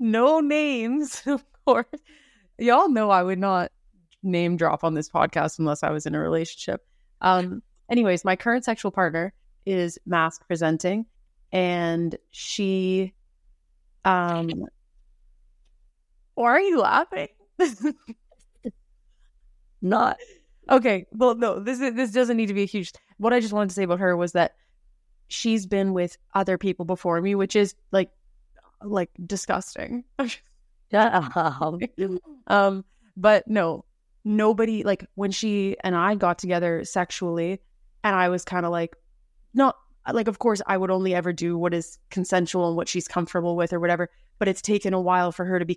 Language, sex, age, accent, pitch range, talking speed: English, female, 20-39, American, 175-210 Hz, 155 wpm